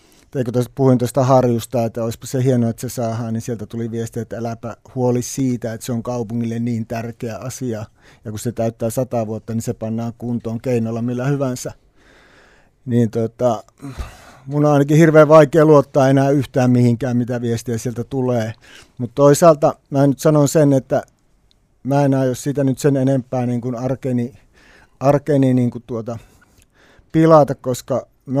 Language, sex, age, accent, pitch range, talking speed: Finnish, male, 60-79, native, 120-140 Hz, 165 wpm